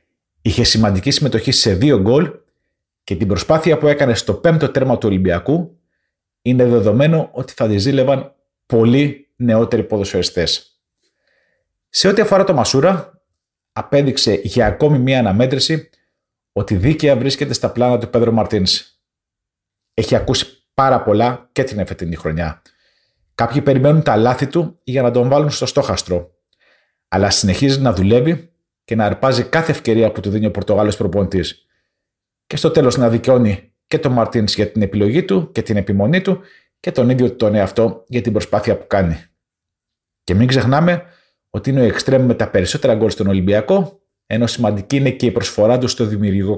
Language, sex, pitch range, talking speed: Greek, male, 105-140 Hz, 160 wpm